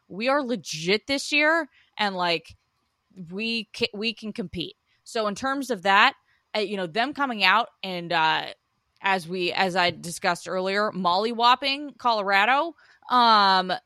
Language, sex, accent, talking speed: English, female, American, 145 wpm